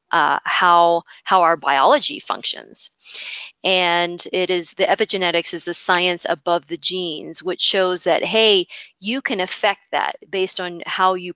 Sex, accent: female, American